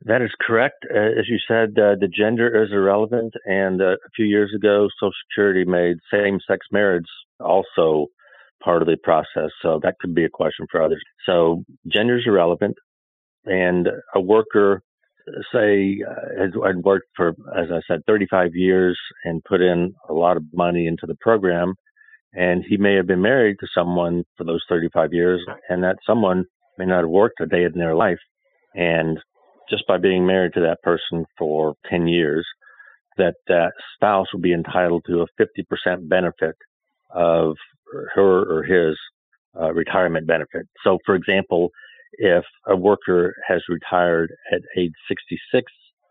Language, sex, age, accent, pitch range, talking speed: English, male, 50-69, American, 85-100 Hz, 165 wpm